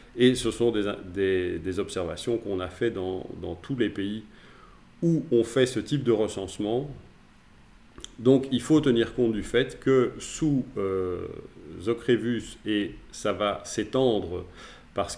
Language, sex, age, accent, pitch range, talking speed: French, male, 40-59, French, 95-120 Hz, 150 wpm